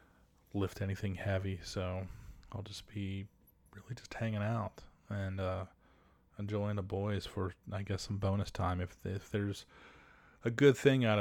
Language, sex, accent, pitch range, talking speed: English, male, American, 90-105 Hz, 155 wpm